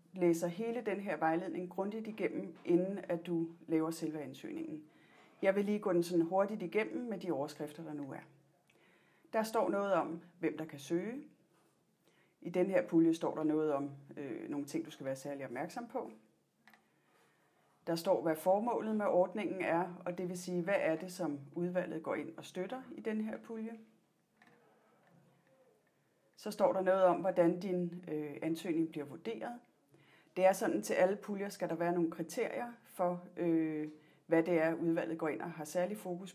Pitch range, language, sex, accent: 160-190 Hz, Danish, female, native